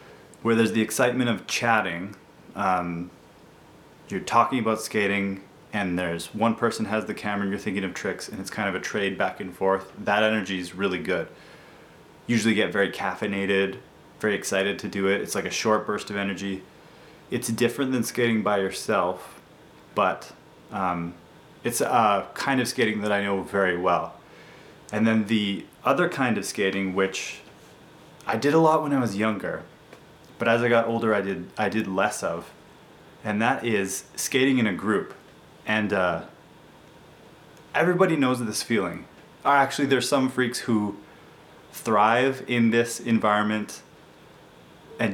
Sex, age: male, 30-49